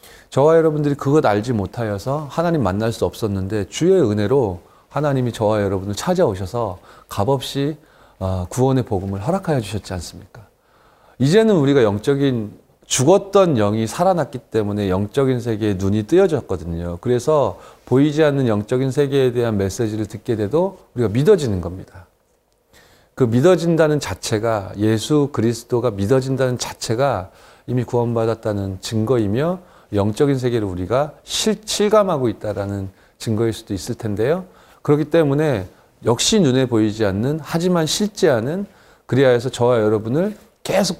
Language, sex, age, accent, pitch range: Korean, male, 30-49, native, 110-155 Hz